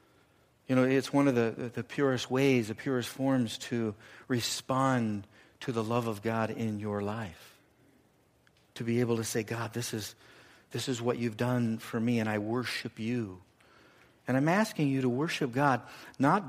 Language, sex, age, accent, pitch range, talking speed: English, male, 50-69, American, 110-130 Hz, 180 wpm